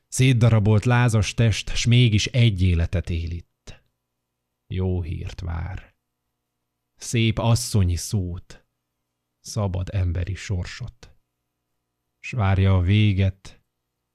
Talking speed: 95 wpm